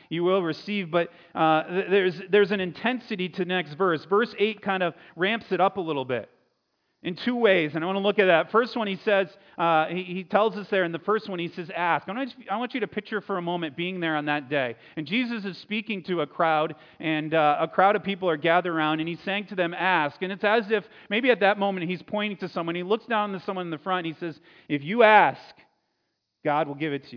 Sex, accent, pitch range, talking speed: male, American, 135-190 Hz, 255 wpm